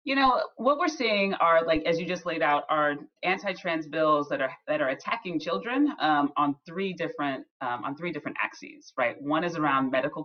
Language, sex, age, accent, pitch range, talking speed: English, female, 30-49, American, 150-215 Hz, 205 wpm